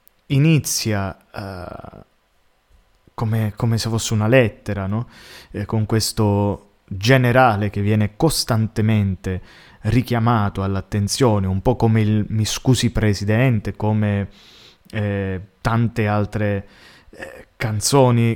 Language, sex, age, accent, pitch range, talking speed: Italian, male, 20-39, native, 100-125 Hz, 95 wpm